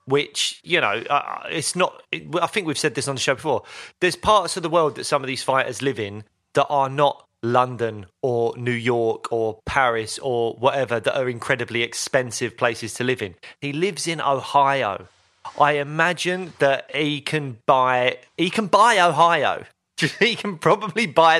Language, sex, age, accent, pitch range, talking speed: English, male, 30-49, British, 125-170 Hz, 180 wpm